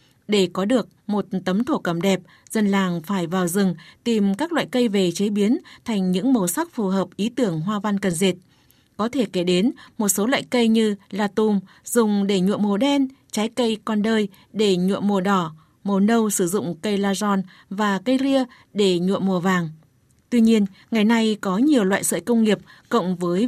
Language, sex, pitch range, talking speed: Vietnamese, female, 190-230 Hz, 210 wpm